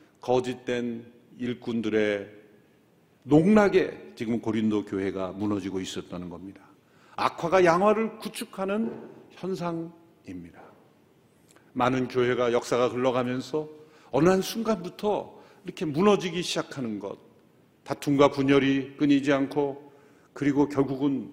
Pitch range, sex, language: 130-195 Hz, male, Korean